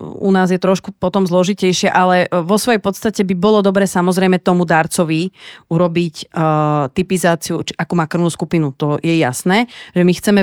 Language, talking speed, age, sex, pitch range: Slovak, 165 wpm, 30-49, female, 170-195 Hz